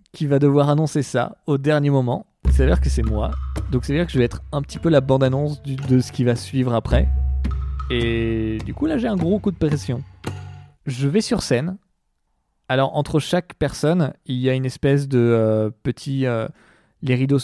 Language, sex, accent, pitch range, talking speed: French, male, French, 120-145 Hz, 215 wpm